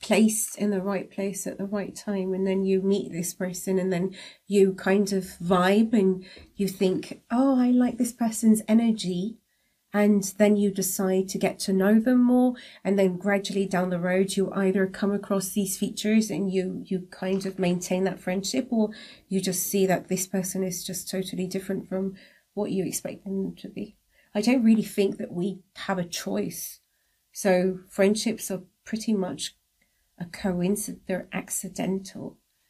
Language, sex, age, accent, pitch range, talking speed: English, female, 30-49, British, 190-225 Hz, 175 wpm